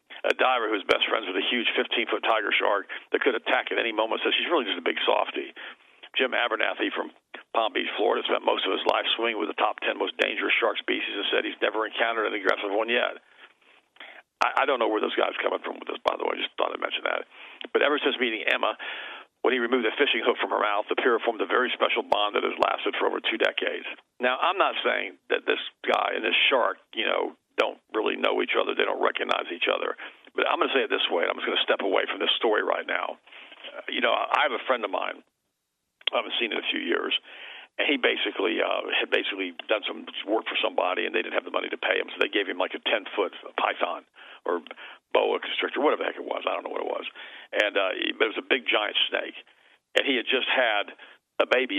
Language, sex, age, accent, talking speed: English, male, 50-69, American, 250 wpm